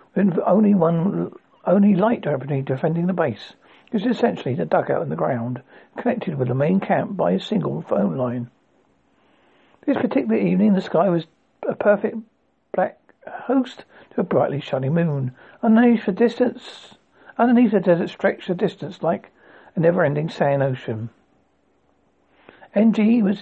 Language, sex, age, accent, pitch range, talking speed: English, male, 60-79, British, 150-220 Hz, 145 wpm